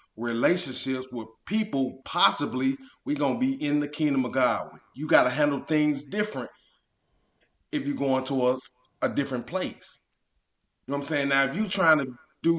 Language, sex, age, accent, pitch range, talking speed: English, male, 30-49, American, 135-175 Hz, 175 wpm